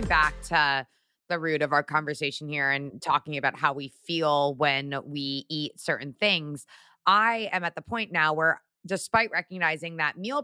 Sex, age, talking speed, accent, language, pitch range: female, 20-39, 170 wpm, American, English, 150-200 Hz